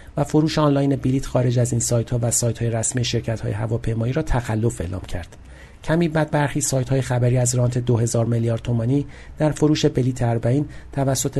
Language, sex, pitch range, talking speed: Persian, male, 120-145 Hz, 185 wpm